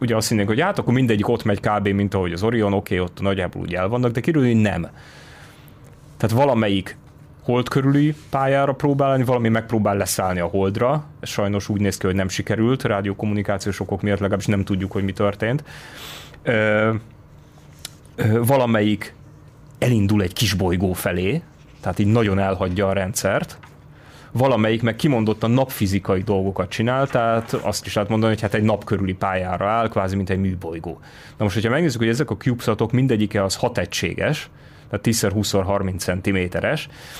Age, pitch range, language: 30-49, 100-120 Hz, Hungarian